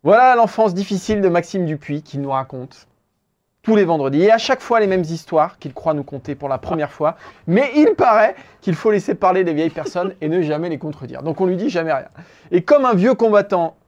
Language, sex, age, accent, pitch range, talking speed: French, male, 30-49, French, 145-210 Hz, 230 wpm